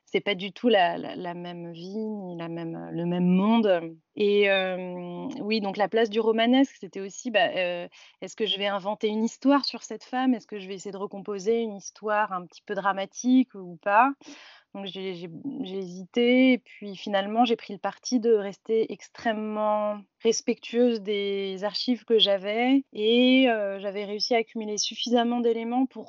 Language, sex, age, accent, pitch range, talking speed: French, female, 20-39, French, 190-240 Hz, 185 wpm